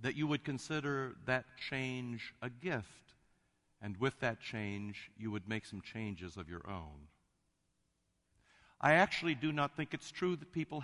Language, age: English, 60-79